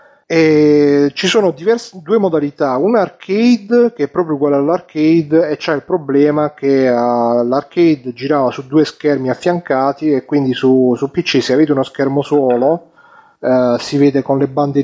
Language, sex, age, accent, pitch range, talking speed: Italian, male, 30-49, native, 130-150 Hz, 165 wpm